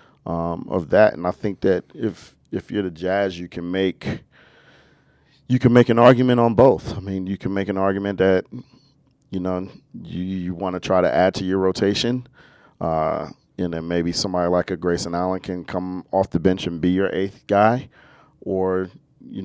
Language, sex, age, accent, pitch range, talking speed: English, male, 40-59, American, 90-100 Hz, 195 wpm